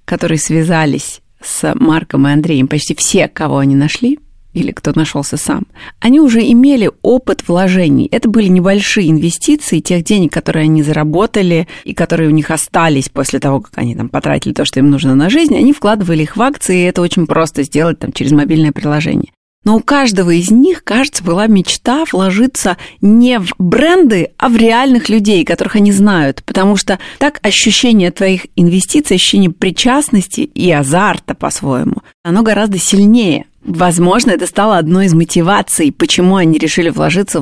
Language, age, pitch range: Russian, 30-49, 160-215 Hz